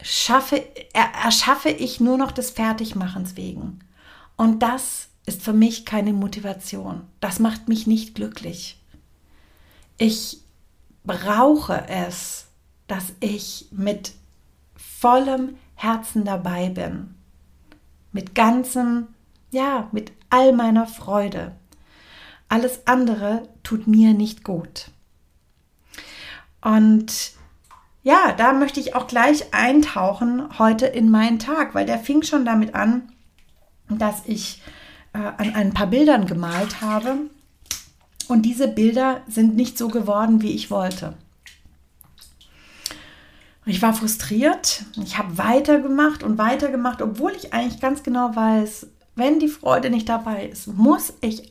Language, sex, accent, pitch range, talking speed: German, female, German, 190-245 Hz, 120 wpm